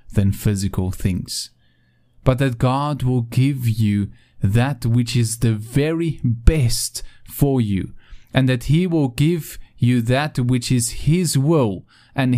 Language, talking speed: English, 140 wpm